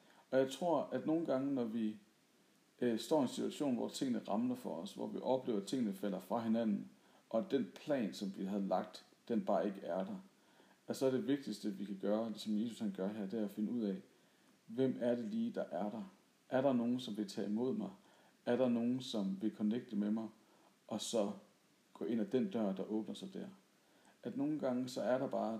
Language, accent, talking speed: Danish, native, 230 wpm